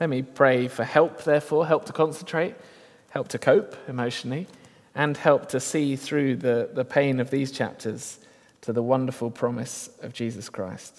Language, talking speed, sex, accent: English, 170 wpm, male, British